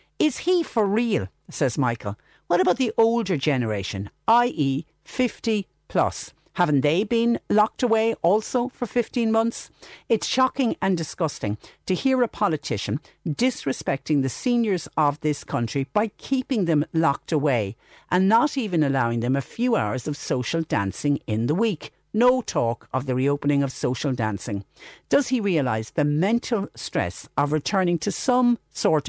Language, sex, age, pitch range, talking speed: English, female, 50-69, 135-205 Hz, 155 wpm